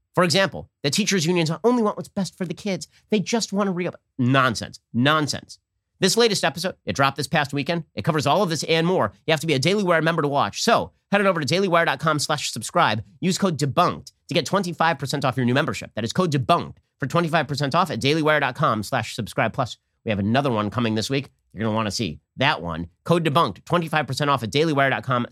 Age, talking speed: 40-59, 225 wpm